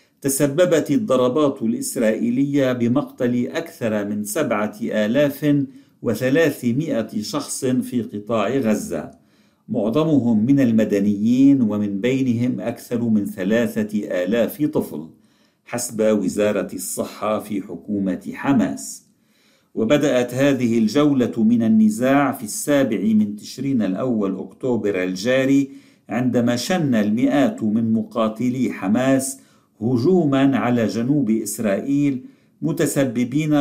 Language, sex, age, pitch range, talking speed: Arabic, male, 50-69, 115-150 Hz, 95 wpm